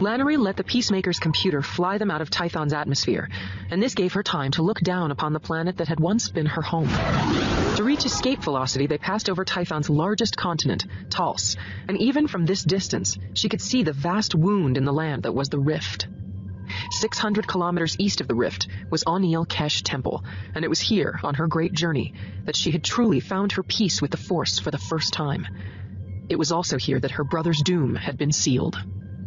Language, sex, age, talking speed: English, female, 30-49, 205 wpm